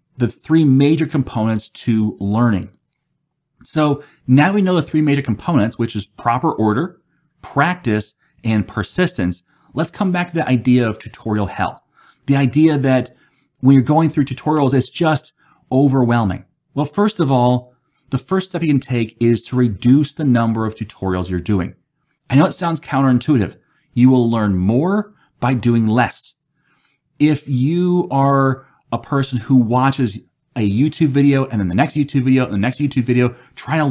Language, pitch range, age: English, 120-150 Hz, 30-49